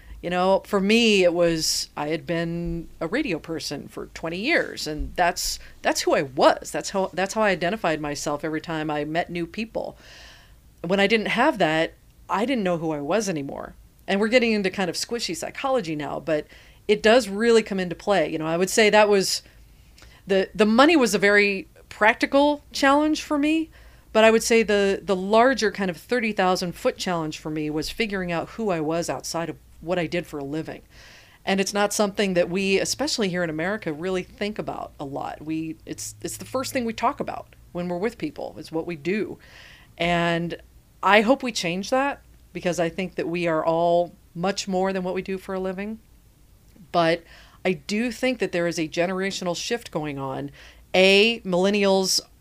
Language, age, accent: English, 40-59, American